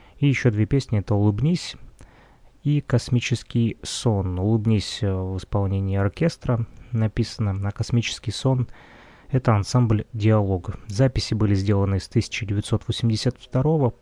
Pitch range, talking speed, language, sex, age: 100-120 Hz, 105 wpm, Russian, male, 20-39